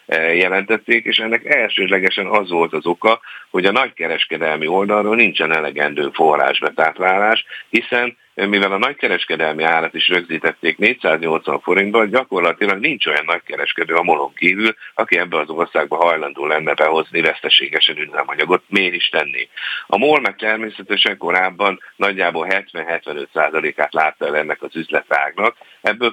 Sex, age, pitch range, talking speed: male, 50-69, 85-105 Hz, 130 wpm